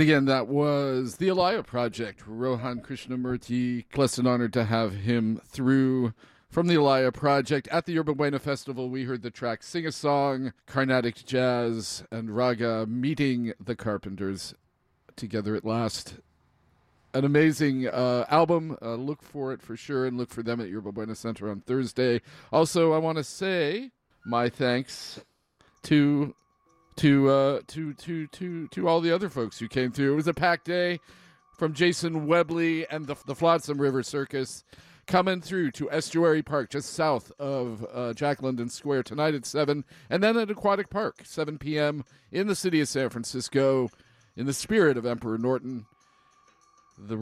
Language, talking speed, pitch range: English, 165 wpm, 120-155 Hz